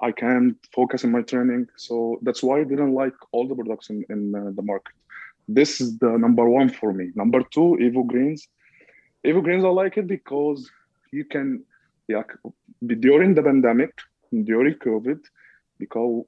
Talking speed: 175 wpm